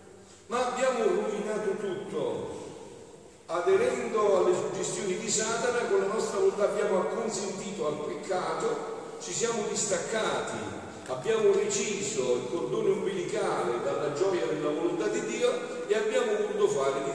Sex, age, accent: male, 50-69, native